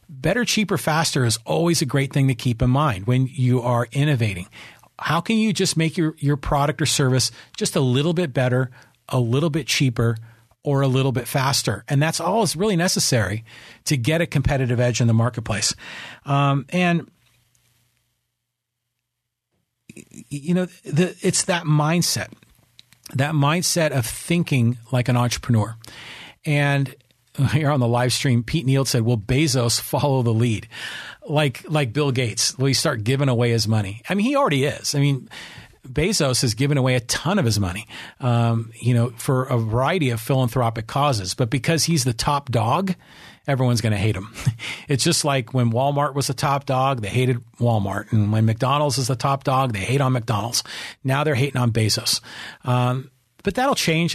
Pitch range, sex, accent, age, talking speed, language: 120-150 Hz, male, American, 40-59, 180 wpm, English